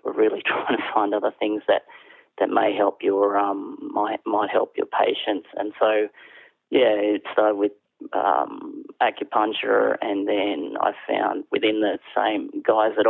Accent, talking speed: Australian, 160 wpm